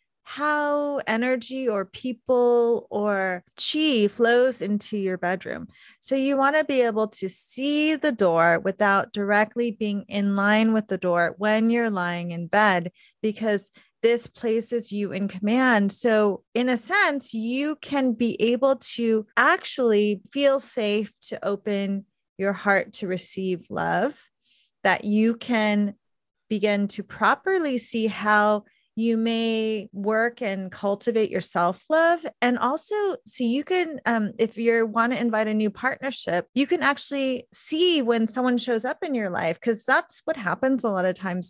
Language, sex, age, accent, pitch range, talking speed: English, female, 30-49, American, 205-250 Hz, 155 wpm